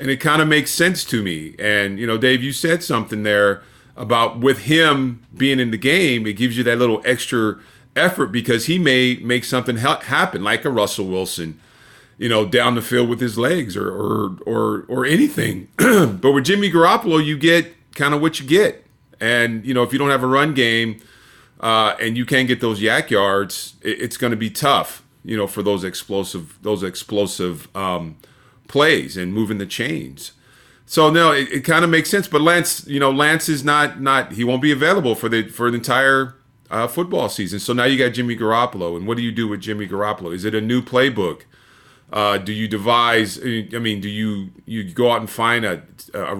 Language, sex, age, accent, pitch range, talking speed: English, male, 40-59, American, 105-130 Hz, 210 wpm